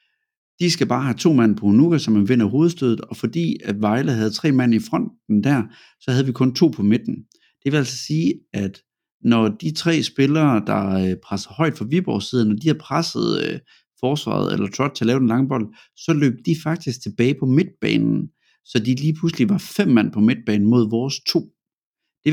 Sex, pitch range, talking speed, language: male, 115-165 Hz, 200 wpm, Danish